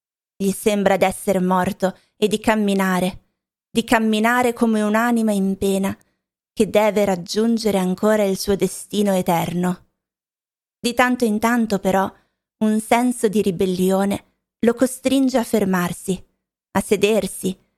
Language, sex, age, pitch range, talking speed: Italian, female, 20-39, 190-225 Hz, 120 wpm